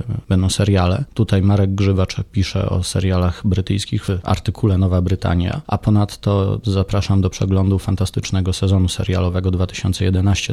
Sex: male